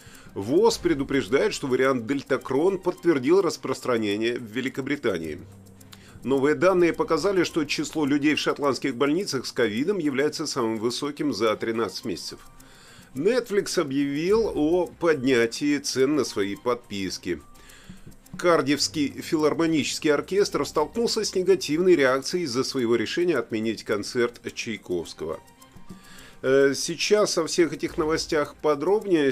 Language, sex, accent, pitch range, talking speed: Russian, male, native, 120-180 Hz, 110 wpm